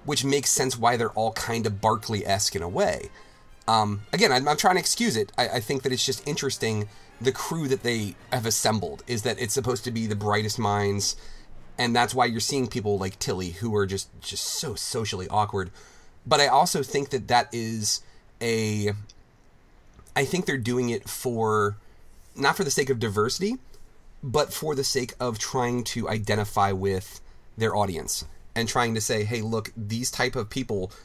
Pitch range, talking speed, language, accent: 105-125 Hz, 190 wpm, English, American